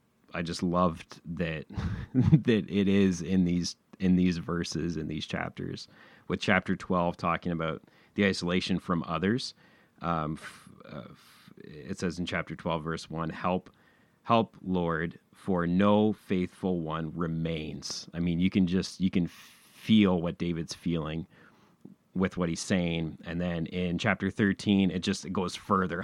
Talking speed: 155 wpm